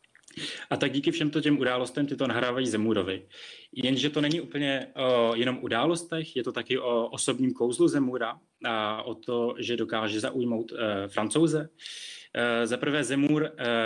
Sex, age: male, 20-39